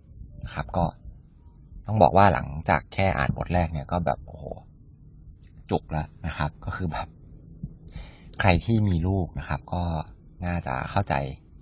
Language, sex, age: Thai, male, 20-39